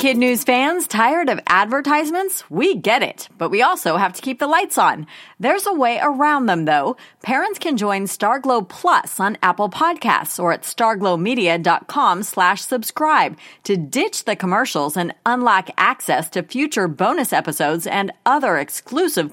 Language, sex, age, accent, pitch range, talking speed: English, female, 40-59, American, 170-275 Hz, 160 wpm